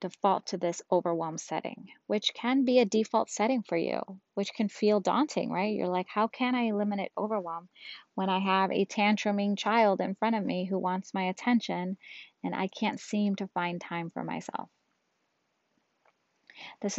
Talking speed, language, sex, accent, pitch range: 175 wpm, English, female, American, 180-210 Hz